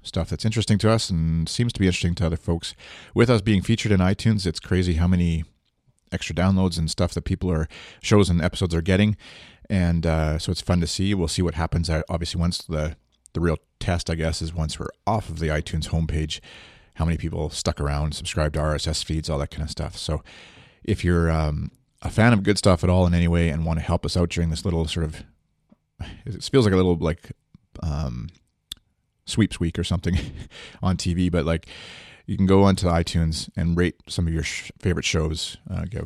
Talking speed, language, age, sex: 215 wpm, English, 30-49, male